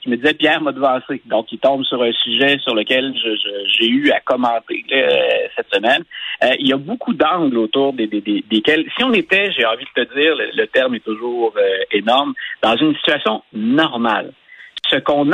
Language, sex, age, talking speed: French, male, 50-69, 195 wpm